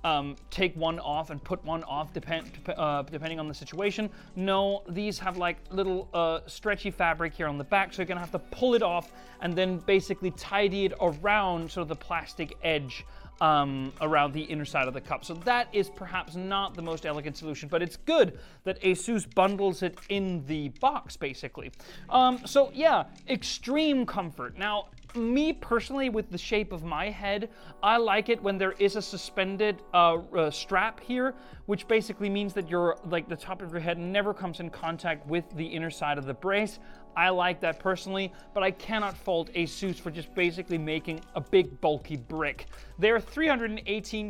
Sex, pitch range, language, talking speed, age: male, 165-205 Hz, English, 190 wpm, 30-49